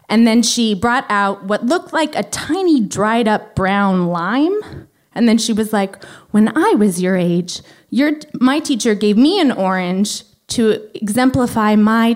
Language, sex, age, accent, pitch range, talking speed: English, female, 20-39, American, 200-265 Hz, 170 wpm